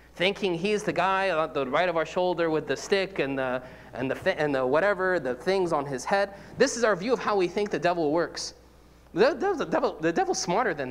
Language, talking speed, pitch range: English, 250 wpm, 125-195 Hz